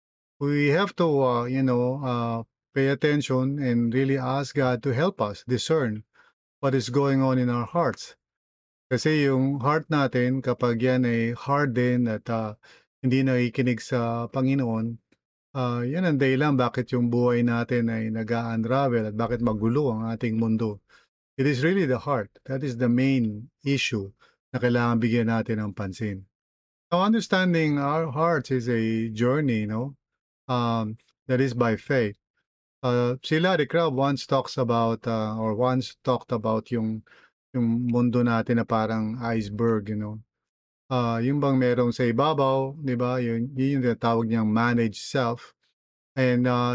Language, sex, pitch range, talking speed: English, male, 115-135 Hz, 155 wpm